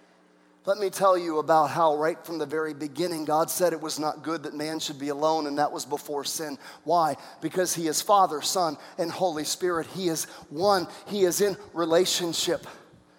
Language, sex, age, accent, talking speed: English, male, 40-59, American, 195 wpm